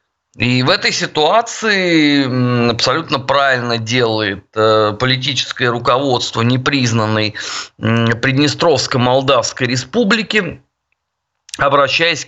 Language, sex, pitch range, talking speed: Russian, male, 115-150 Hz, 65 wpm